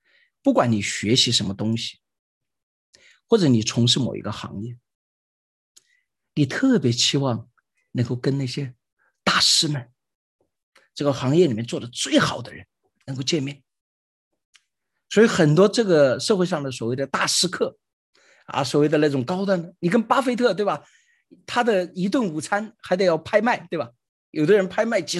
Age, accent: 50-69, native